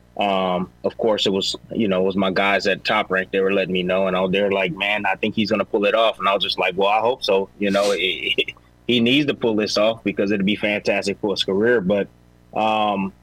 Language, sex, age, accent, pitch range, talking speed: English, male, 20-39, American, 95-120 Hz, 275 wpm